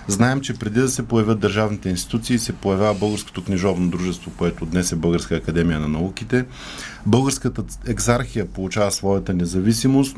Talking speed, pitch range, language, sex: 145 wpm, 95-120 Hz, Bulgarian, male